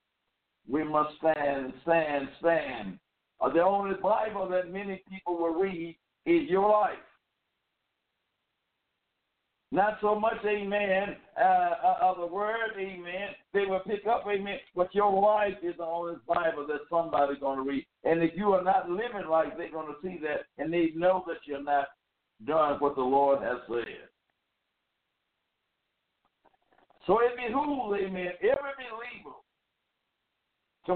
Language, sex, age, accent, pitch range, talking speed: English, male, 60-79, American, 155-200 Hz, 145 wpm